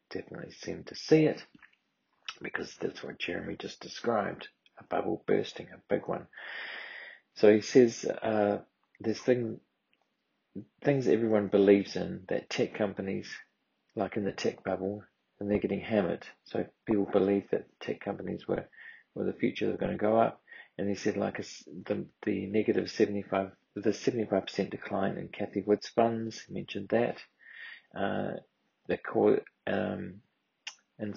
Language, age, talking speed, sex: English, 40-59, 150 wpm, male